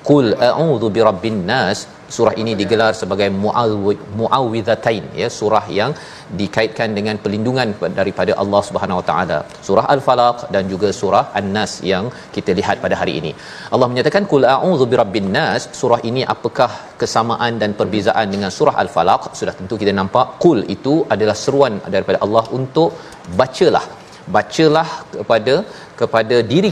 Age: 40-59